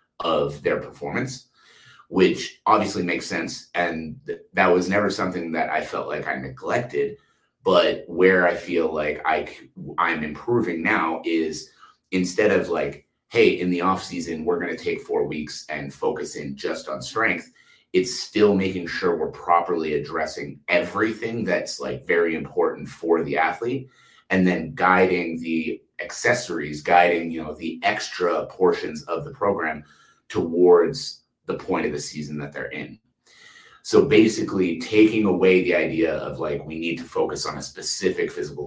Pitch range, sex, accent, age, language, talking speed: 80-105 Hz, male, American, 30-49, English, 160 wpm